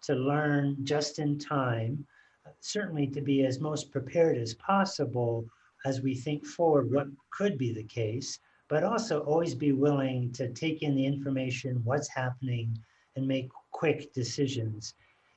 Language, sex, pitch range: English, male, 125-145 Hz